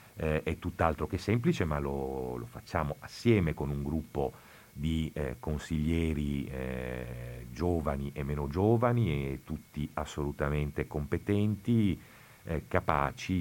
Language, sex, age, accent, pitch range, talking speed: Italian, male, 40-59, native, 75-90 Hz, 120 wpm